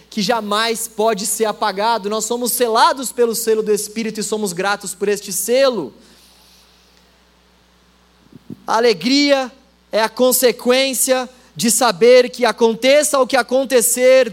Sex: male